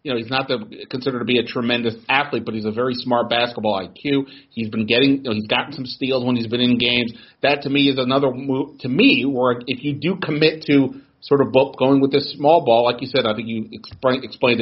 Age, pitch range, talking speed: 40-59, 115-140 Hz, 245 wpm